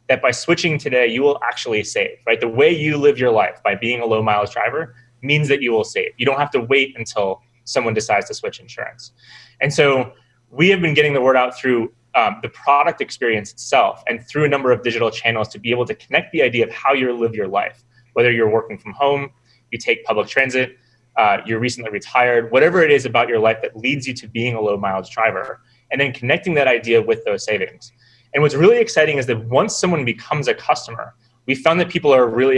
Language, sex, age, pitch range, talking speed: English, male, 20-39, 120-150 Hz, 230 wpm